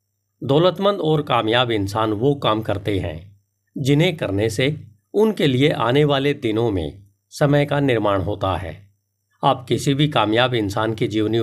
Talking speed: 150 wpm